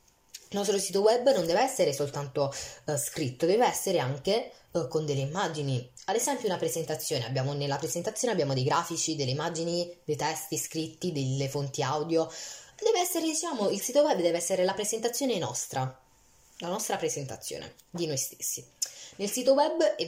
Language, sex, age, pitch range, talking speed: Italian, female, 10-29, 150-200 Hz, 165 wpm